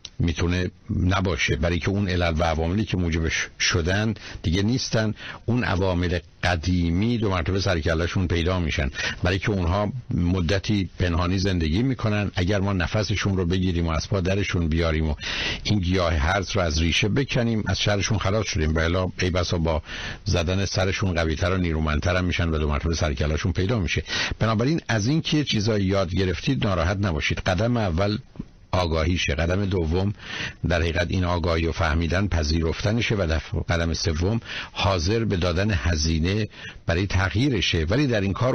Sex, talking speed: male, 155 wpm